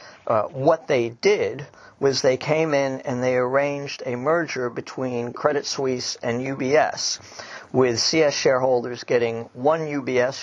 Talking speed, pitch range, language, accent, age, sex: 140 wpm, 125-145 Hz, English, American, 50-69, male